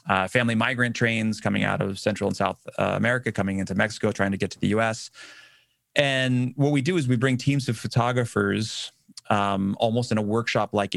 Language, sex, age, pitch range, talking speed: English, male, 30-49, 100-120 Hz, 195 wpm